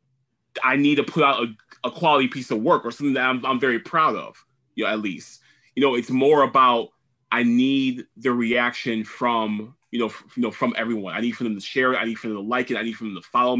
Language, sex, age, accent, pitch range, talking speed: English, male, 20-39, American, 110-130 Hz, 265 wpm